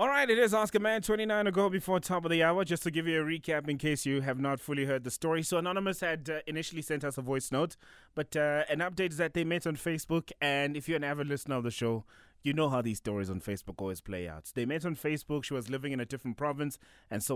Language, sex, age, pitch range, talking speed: English, male, 20-39, 120-160 Hz, 275 wpm